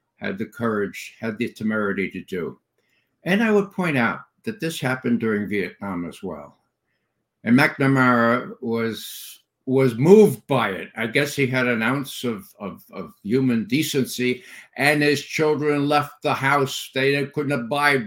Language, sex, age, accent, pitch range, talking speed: English, male, 60-79, American, 120-160 Hz, 155 wpm